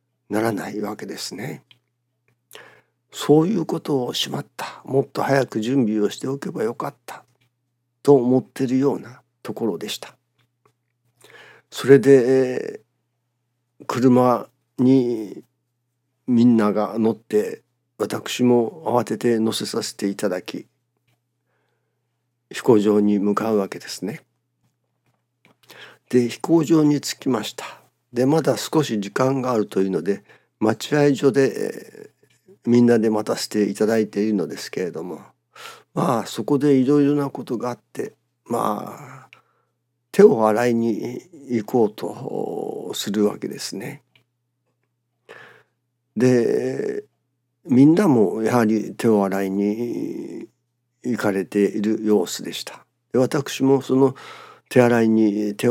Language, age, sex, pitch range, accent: Japanese, 50-69, male, 110-130 Hz, native